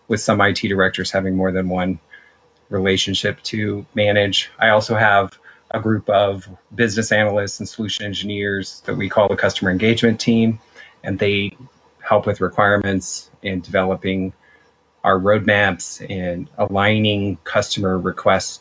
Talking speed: 135 wpm